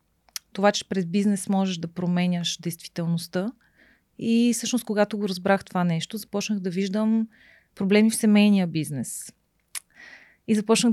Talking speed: 130 wpm